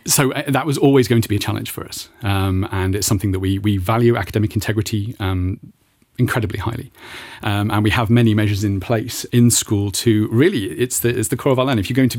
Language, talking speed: English, 240 wpm